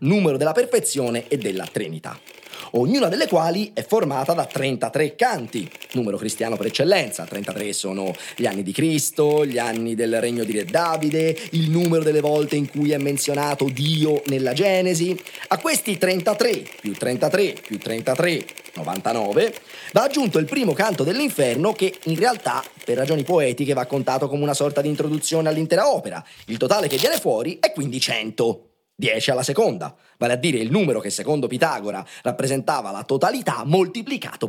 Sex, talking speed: male, 165 wpm